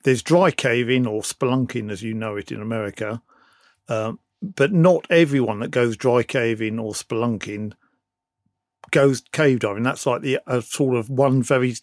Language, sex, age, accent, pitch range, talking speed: English, male, 50-69, British, 115-140 Hz, 160 wpm